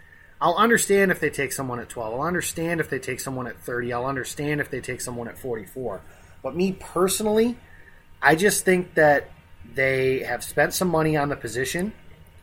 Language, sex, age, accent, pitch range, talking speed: English, male, 30-49, American, 115-150 Hz, 190 wpm